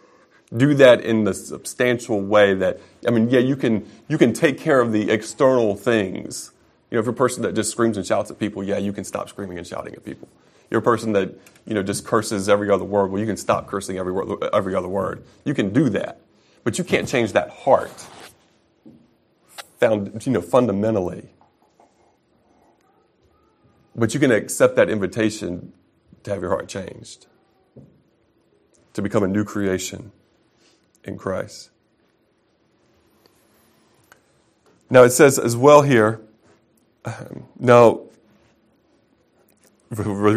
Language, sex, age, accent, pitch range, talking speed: English, male, 30-49, American, 100-115 Hz, 155 wpm